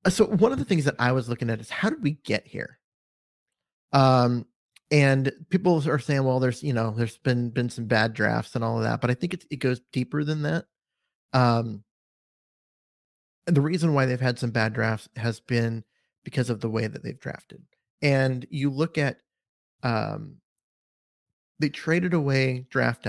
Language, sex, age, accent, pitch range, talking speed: English, male, 30-49, American, 115-150 Hz, 185 wpm